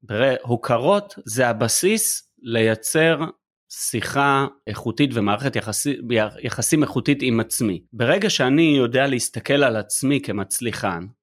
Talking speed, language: 110 wpm, Hebrew